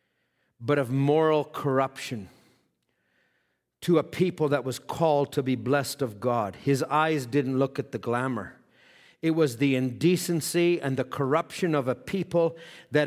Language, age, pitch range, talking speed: English, 50-69, 135-175 Hz, 150 wpm